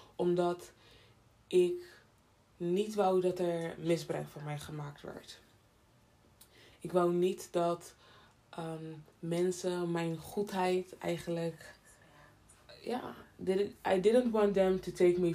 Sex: female